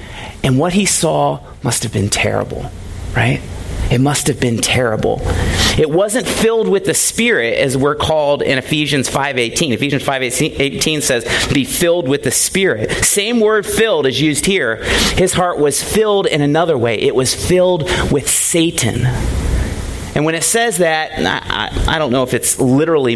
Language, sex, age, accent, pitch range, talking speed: English, male, 40-59, American, 110-150 Hz, 165 wpm